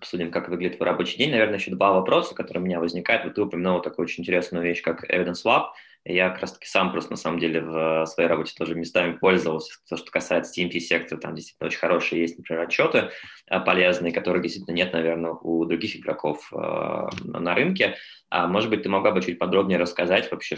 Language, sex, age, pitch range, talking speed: Russian, male, 20-39, 85-90 Hz, 205 wpm